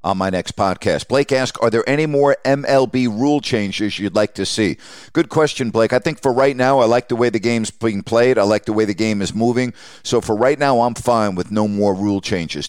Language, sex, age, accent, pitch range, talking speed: English, male, 50-69, American, 100-125 Hz, 245 wpm